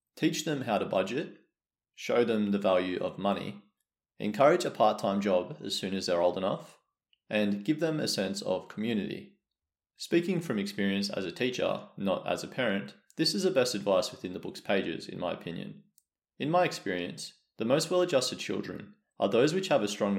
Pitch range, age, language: 95-145 Hz, 30-49, English